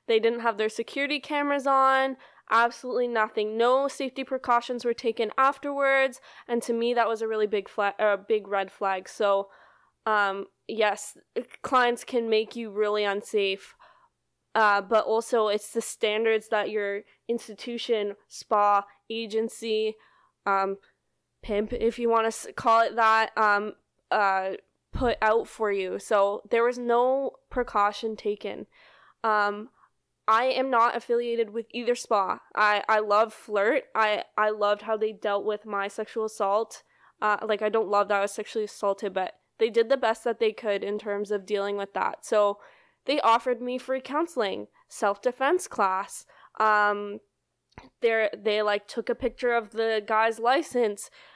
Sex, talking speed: female, 160 wpm